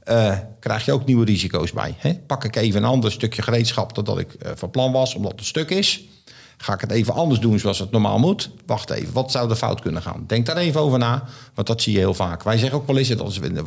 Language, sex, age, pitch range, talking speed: Dutch, male, 50-69, 110-135 Hz, 270 wpm